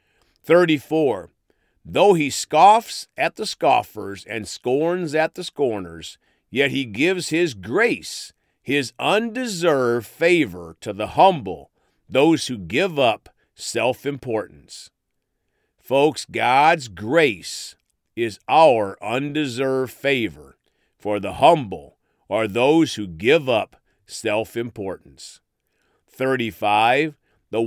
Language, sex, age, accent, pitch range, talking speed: English, male, 50-69, American, 105-155 Hz, 105 wpm